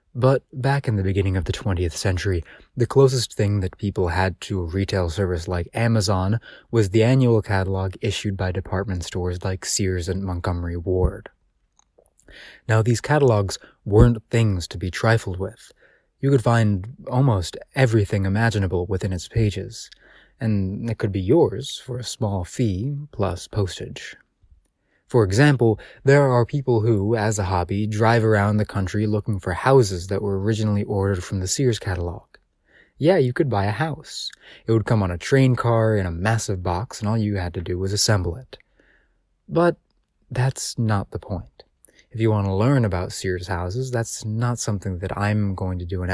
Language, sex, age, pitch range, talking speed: English, male, 20-39, 95-115 Hz, 175 wpm